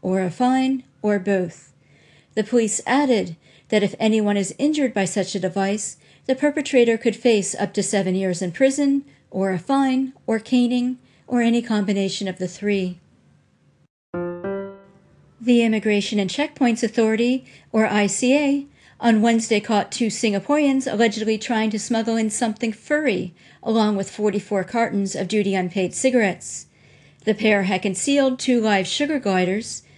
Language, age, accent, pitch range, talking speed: English, 50-69, American, 195-245 Hz, 145 wpm